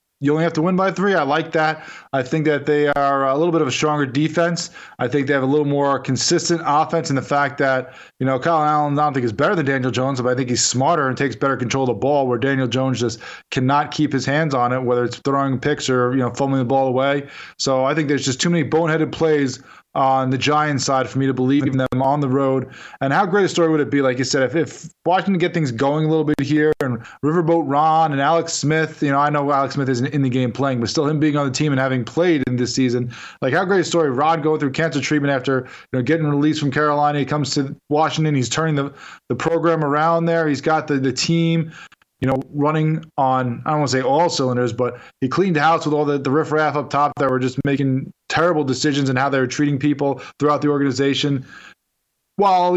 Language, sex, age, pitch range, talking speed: English, male, 20-39, 130-155 Hz, 255 wpm